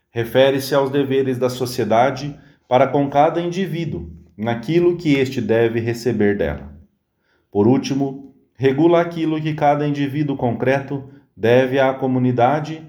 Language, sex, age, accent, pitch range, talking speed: English, male, 40-59, Brazilian, 115-145 Hz, 120 wpm